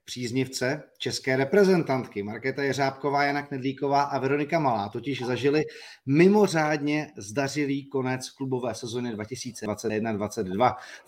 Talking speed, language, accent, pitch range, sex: 95 wpm, Czech, native, 120-145 Hz, male